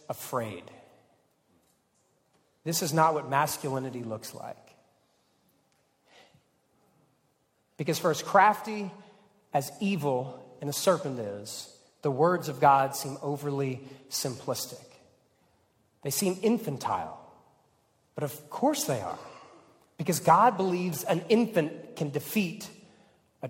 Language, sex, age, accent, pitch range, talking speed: English, male, 40-59, American, 135-180 Hz, 105 wpm